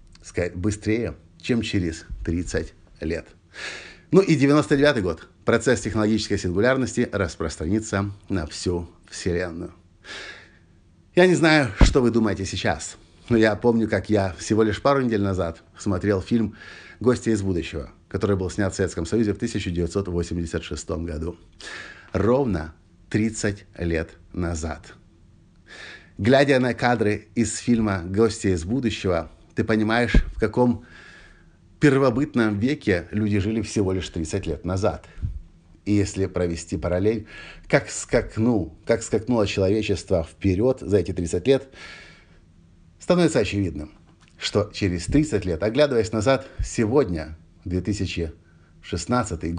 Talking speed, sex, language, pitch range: 115 wpm, male, Russian, 85-110 Hz